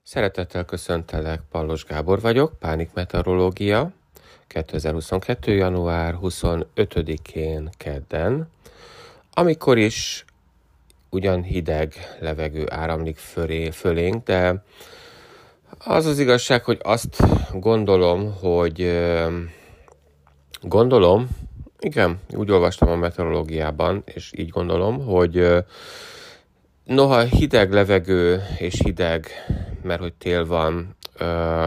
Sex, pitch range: male, 80-95 Hz